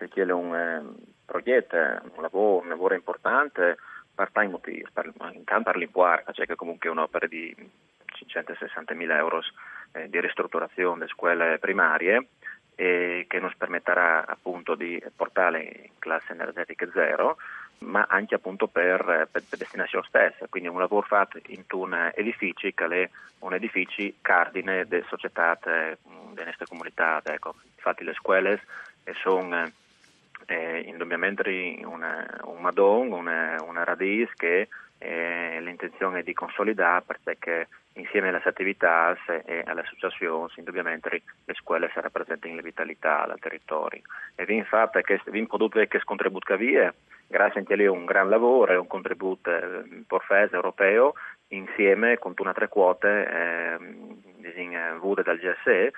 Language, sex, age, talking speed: Italian, male, 30-49, 140 wpm